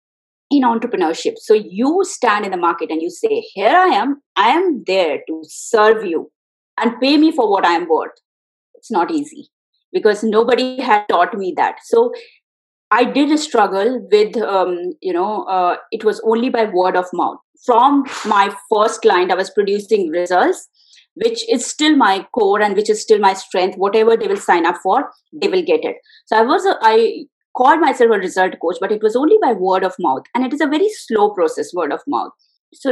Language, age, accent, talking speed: English, 20-39, Indian, 205 wpm